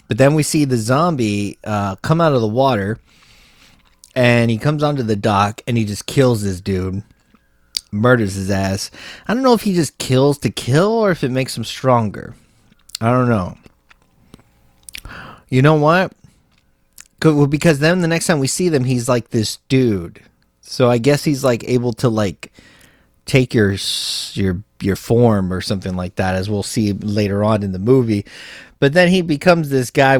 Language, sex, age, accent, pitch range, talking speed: English, male, 30-49, American, 100-130 Hz, 185 wpm